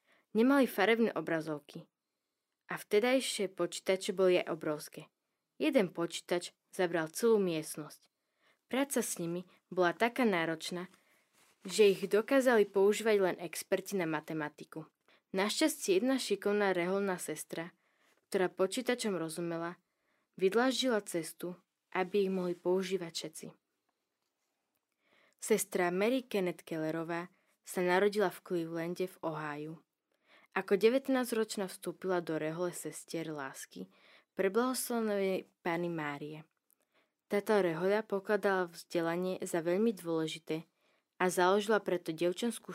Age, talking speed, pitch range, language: 20-39, 105 wpm, 170-210 Hz, Slovak